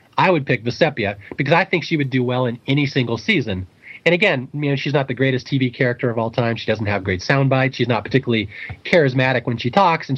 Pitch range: 125-165 Hz